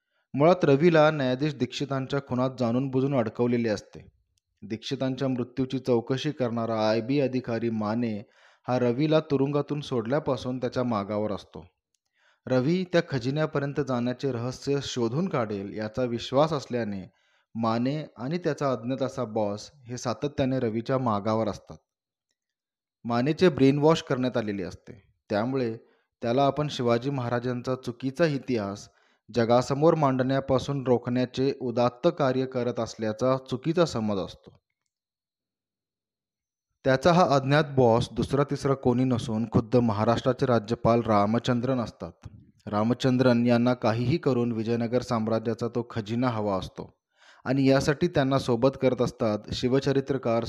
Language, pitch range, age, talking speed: Marathi, 115-135 Hz, 20-39, 115 wpm